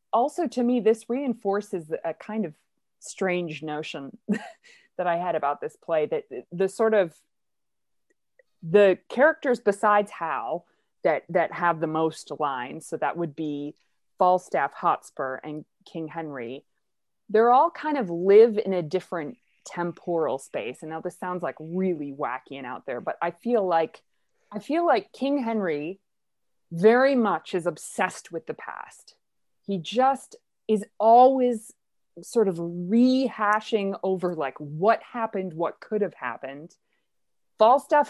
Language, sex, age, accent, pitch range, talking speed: English, female, 20-39, American, 170-235 Hz, 145 wpm